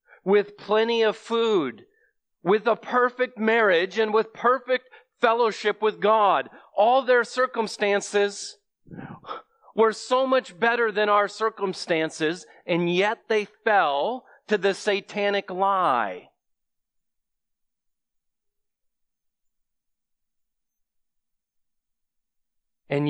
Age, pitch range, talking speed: 40-59, 180-225 Hz, 85 wpm